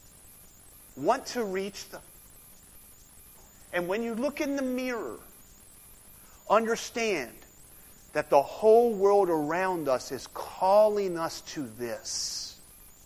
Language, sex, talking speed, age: English, male, 105 wpm, 40-59